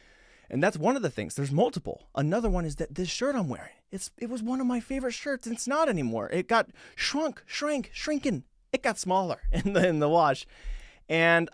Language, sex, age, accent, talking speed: English, male, 30-49, American, 220 wpm